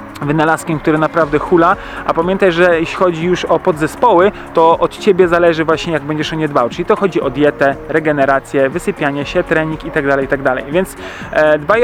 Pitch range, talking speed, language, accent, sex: 155-180 Hz, 175 wpm, Polish, native, male